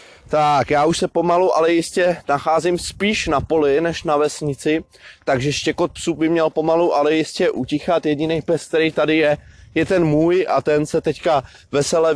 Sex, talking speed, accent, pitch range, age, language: male, 180 wpm, native, 130-165 Hz, 20-39, Czech